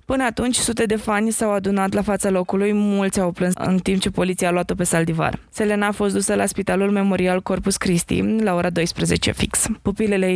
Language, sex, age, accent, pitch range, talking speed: Romanian, female, 20-39, native, 180-205 Hz, 205 wpm